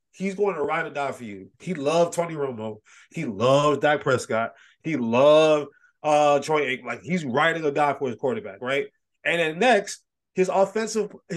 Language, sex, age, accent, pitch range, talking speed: English, male, 30-49, American, 140-190 Hz, 185 wpm